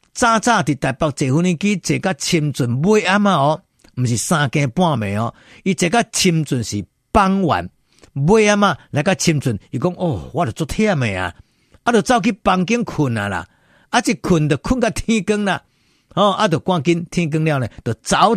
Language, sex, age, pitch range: Chinese, male, 50-69, 135-190 Hz